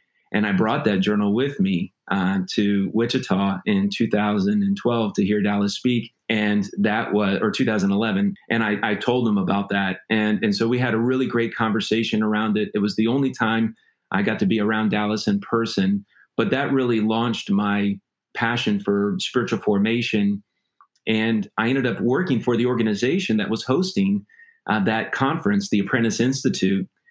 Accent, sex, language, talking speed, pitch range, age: American, male, English, 175 wpm, 105-125 Hz, 30-49